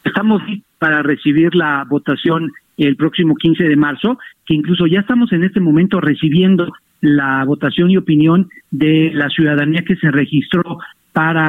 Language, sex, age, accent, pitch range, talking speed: Spanish, male, 50-69, Mexican, 150-180 Hz, 150 wpm